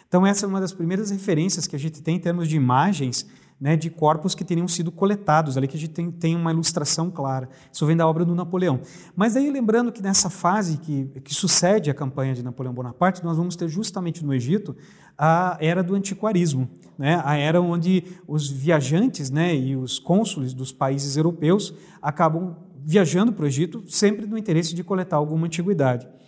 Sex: male